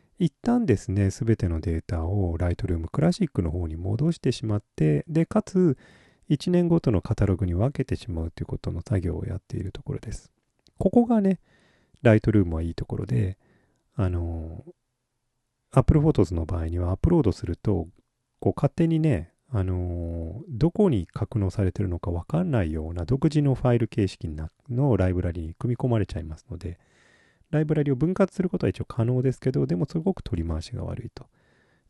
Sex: male